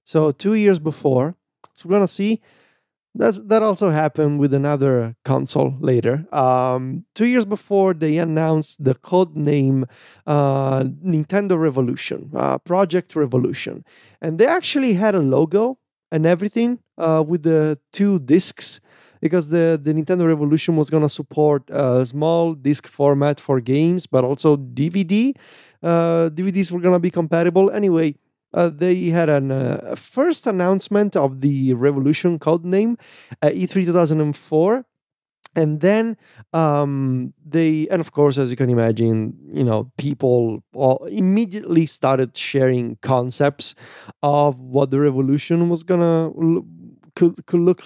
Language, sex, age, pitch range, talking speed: English, male, 30-49, 135-180 Hz, 150 wpm